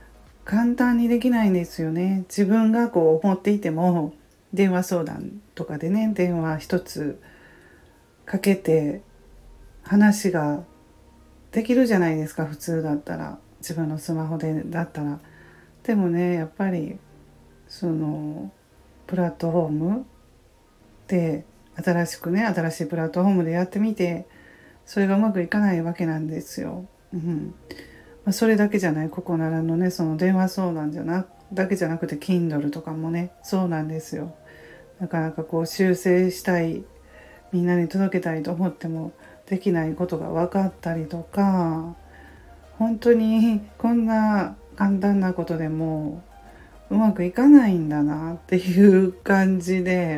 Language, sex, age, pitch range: Japanese, female, 40-59, 155-190 Hz